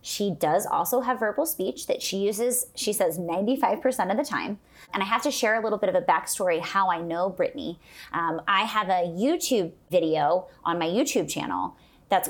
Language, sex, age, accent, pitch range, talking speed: English, female, 20-39, American, 180-235 Hz, 200 wpm